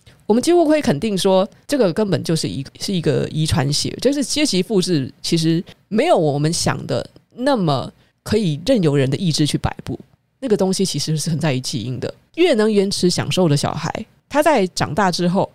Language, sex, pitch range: Chinese, female, 150-210 Hz